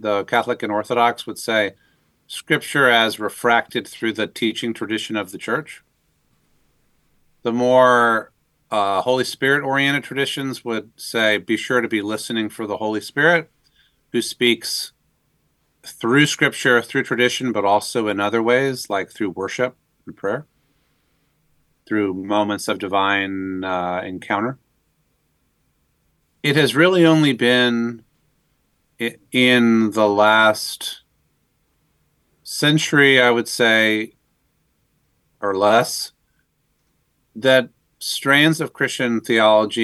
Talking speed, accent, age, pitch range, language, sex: 110 wpm, American, 40-59, 110-135 Hz, English, male